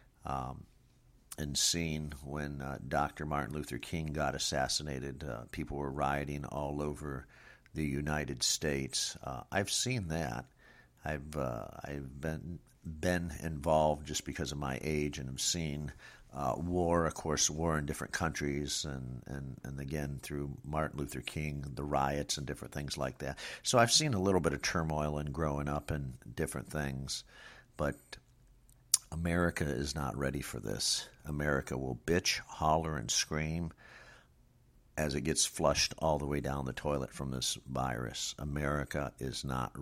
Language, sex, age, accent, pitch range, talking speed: English, male, 50-69, American, 70-80 Hz, 155 wpm